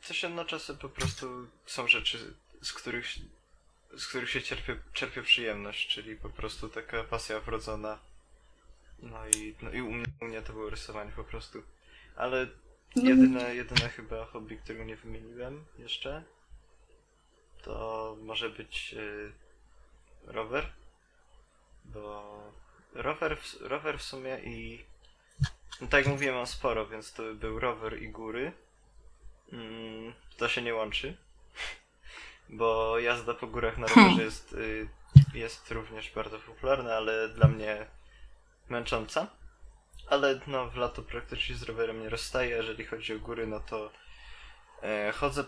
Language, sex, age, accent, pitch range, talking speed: Polish, male, 20-39, native, 110-120 Hz, 130 wpm